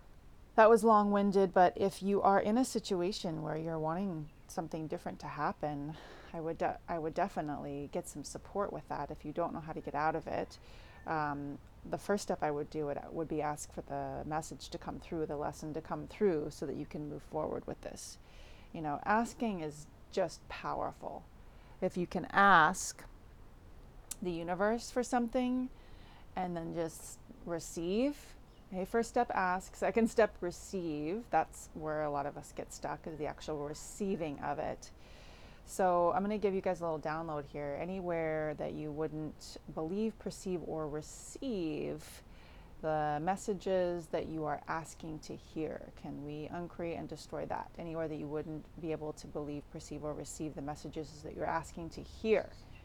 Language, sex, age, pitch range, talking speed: English, female, 30-49, 150-185 Hz, 175 wpm